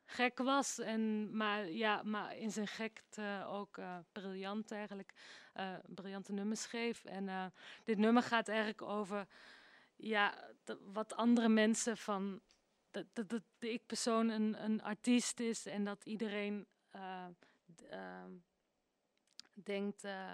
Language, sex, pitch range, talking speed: Dutch, female, 195-225 Hz, 130 wpm